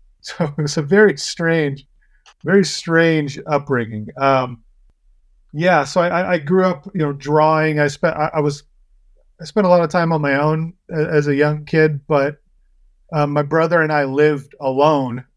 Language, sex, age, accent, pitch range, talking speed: English, male, 30-49, American, 130-155 Hz, 175 wpm